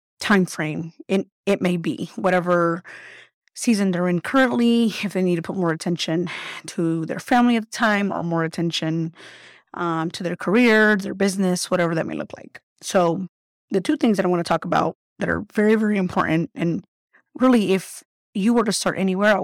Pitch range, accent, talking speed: 175-210 Hz, American, 190 wpm